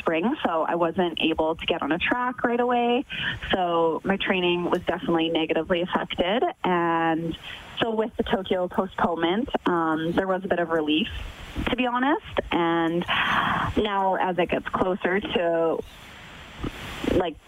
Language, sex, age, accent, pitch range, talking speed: English, female, 20-39, American, 165-215 Hz, 150 wpm